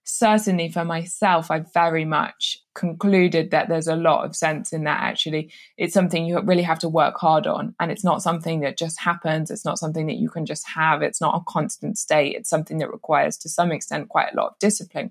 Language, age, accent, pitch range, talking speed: English, 20-39, British, 160-180 Hz, 225 wpm